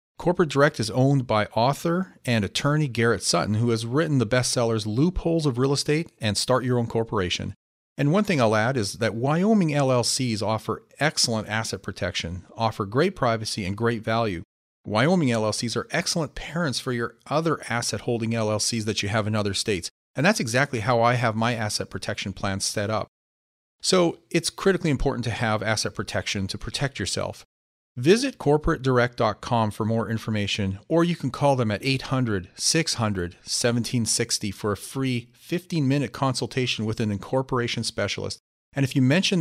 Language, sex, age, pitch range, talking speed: English, male, 40-59, 110-140 Hz, 165 wpm